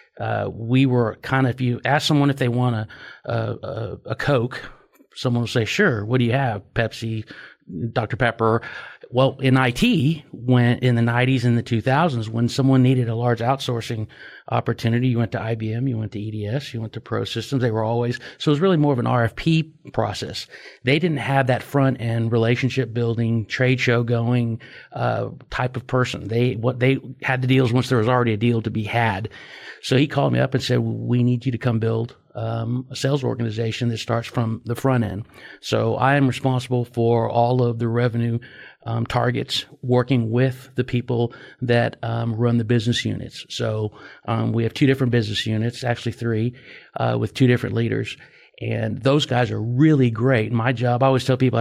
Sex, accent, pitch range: male, American, 115-130 Hz